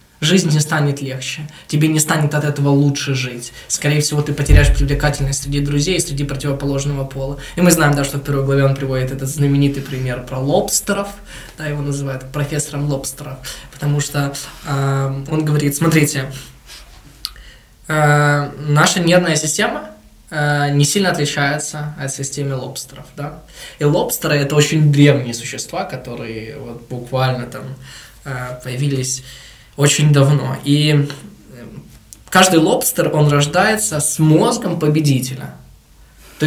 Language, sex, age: Russian, male, 20-39